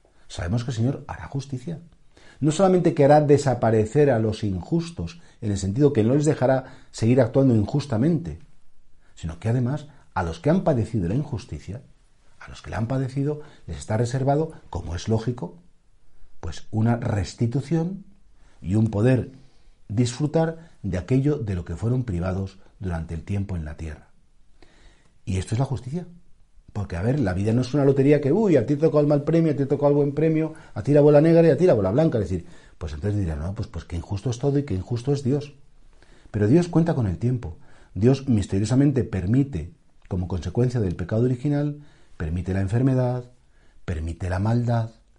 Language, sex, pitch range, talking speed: Spanish, male, 95-145 Hz, 190 wpm